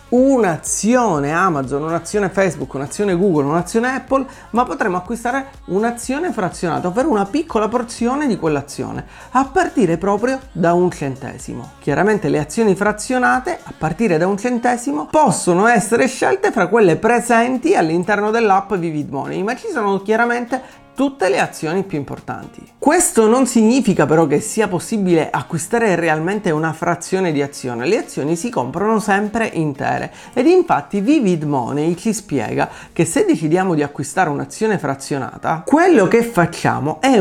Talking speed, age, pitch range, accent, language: 145 wpm, 30-49, 160-245 Hz, native, Italian